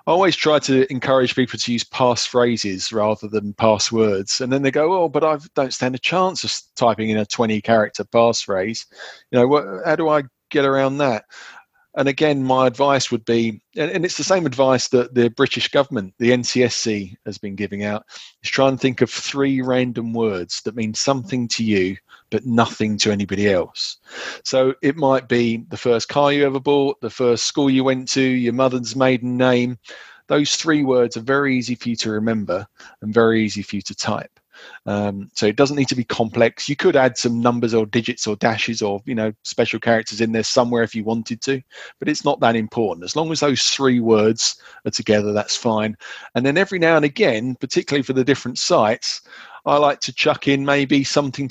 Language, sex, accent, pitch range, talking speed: English, male, British, 110-140 Hz, 205 wpm